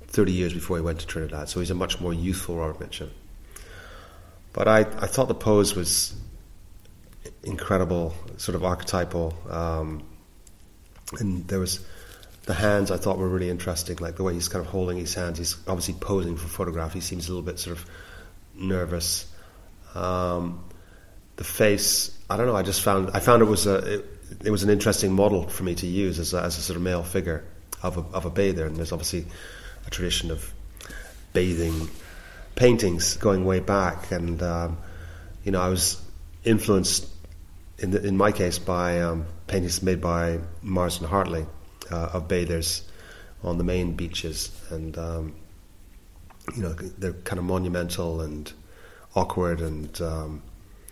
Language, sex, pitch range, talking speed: English, male, 85-95 Hz, 170 wpm